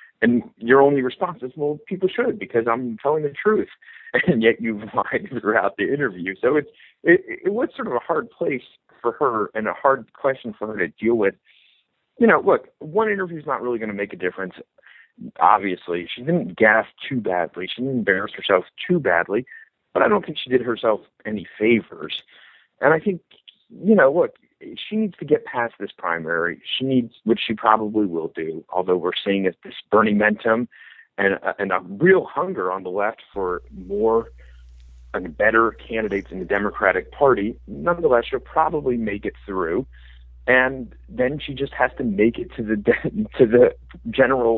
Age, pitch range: 40-59, 105-155 Hz